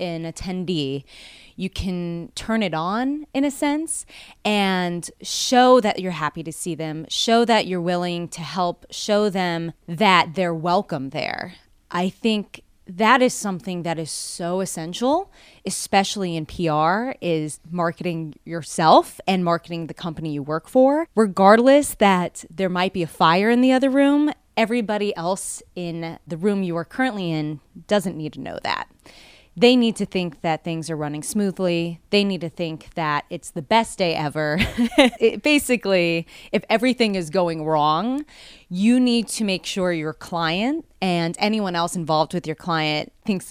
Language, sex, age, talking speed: English, female, 20-39, 160 wpm